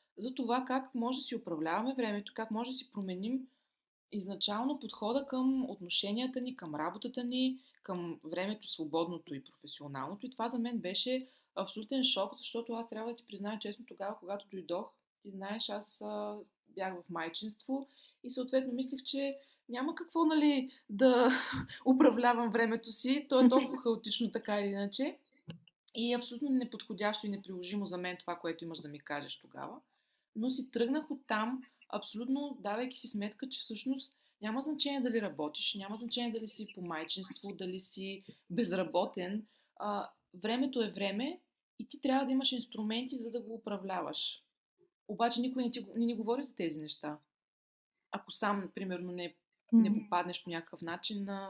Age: 20-39